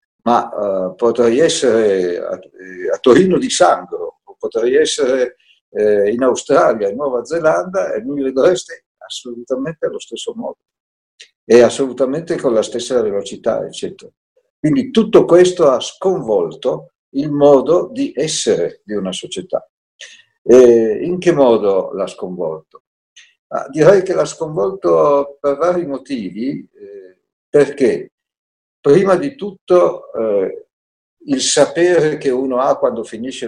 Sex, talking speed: male, 125 wpm